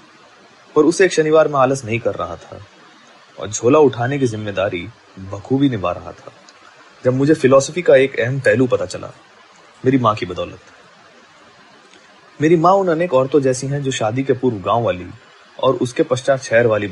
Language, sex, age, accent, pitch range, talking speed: Hindi, male, 20-39, native, 115-150 Hz, 105 wpm